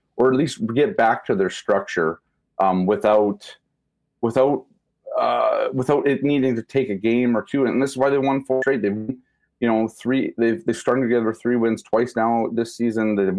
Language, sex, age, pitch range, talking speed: English, male, 30-49, 110-140 Hz, 195 wpm